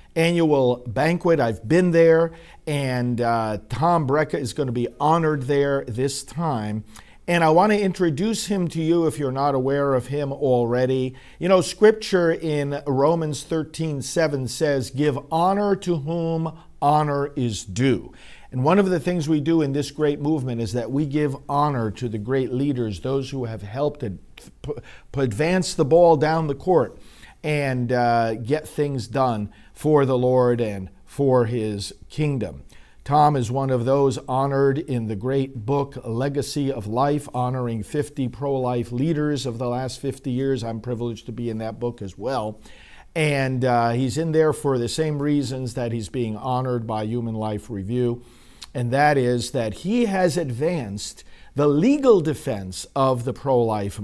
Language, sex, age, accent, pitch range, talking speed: English, male, 50-69, American, 120-155 Hz, 165 wpm